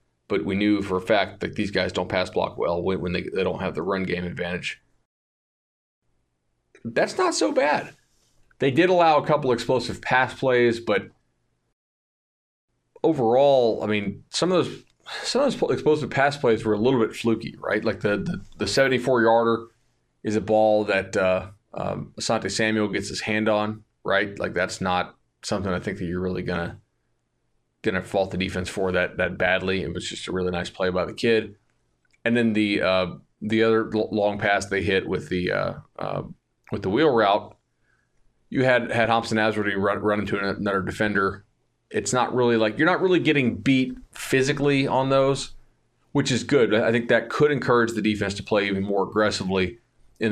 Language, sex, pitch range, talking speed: English, male, 95-120 Hz, 190 wpm